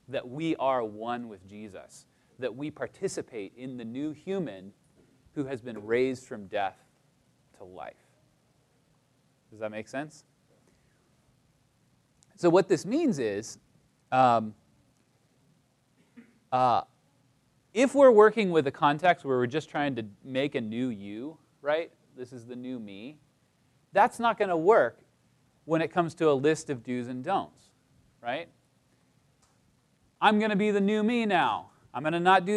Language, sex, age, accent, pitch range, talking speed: English, male, 30-49, American, 130-180 Hz, 150 wpm